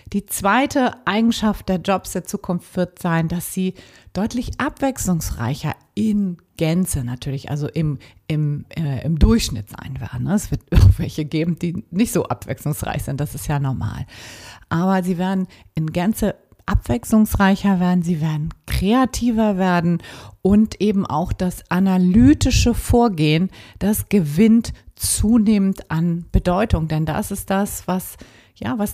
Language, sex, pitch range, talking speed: German, female, 145-200 Hz, 135 wpm